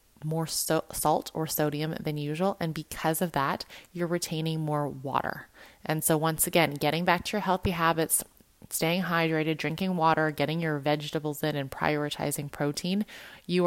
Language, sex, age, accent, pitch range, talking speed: English, female, 20-39, American, 150-185 Hz, 160 wpm